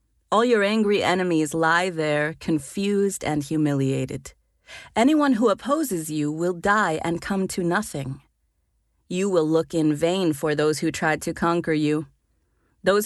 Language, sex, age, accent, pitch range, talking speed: English, female, 40-59, American, 155-210 Hz, 145 wpm